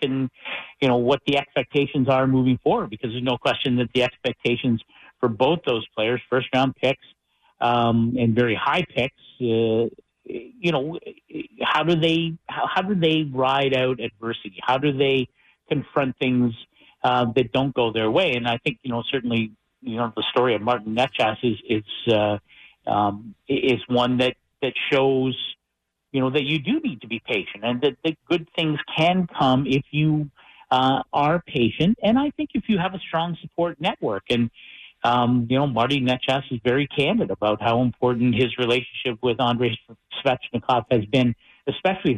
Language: English